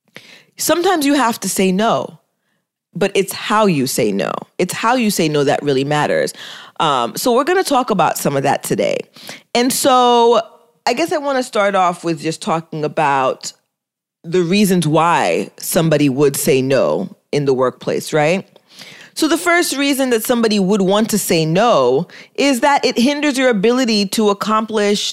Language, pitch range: English, 170-235 Hz